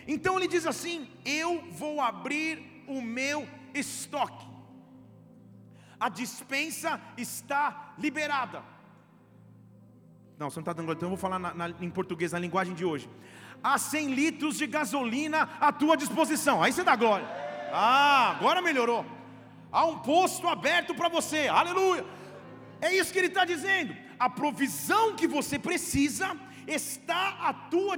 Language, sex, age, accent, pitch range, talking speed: English, male, 40-59, Brazilian, 210-335 Hz, 140 wpm